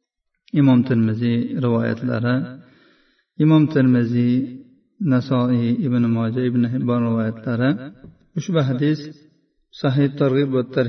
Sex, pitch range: male, 125-145 Hz